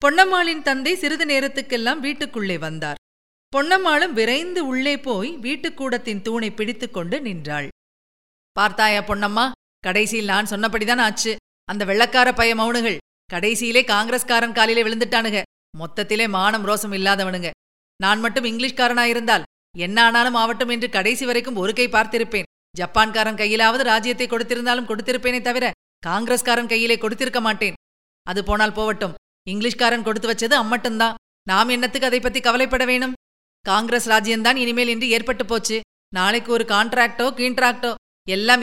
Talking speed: 125 wpm